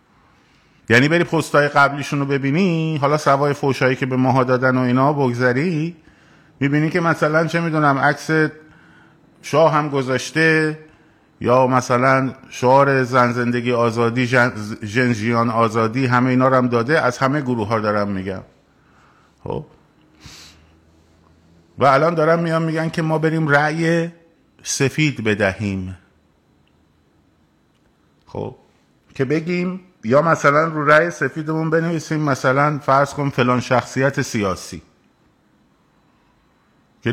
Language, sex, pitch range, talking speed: Persian, male, 120-155 Hz, 115 wpm